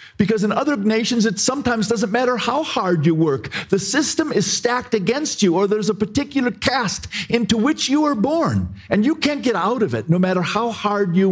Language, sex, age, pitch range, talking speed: English, male, 50-69, 110-185 Hz, 210 wpm